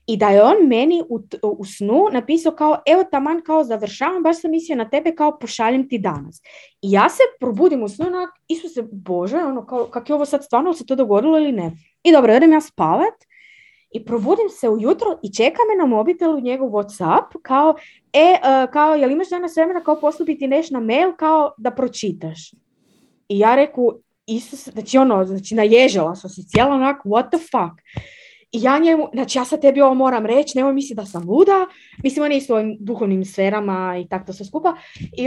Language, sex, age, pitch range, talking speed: Croatian, female, 20-39, 215-305 Hz, 205 wpm